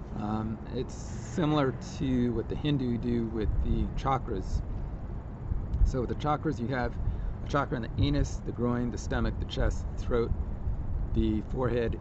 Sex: male